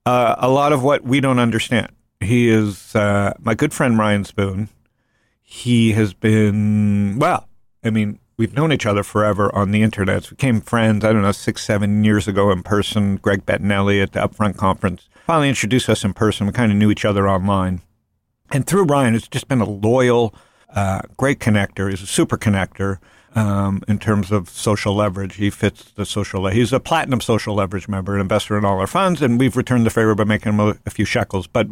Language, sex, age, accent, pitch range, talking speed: English, male, 50-69, American, 100-120 Hz, 210 wpm